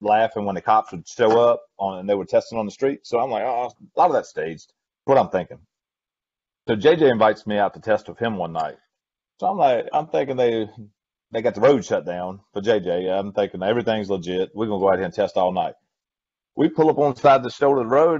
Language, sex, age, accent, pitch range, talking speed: English, male, 30-49, American, 100-145 Hz, 260 wpm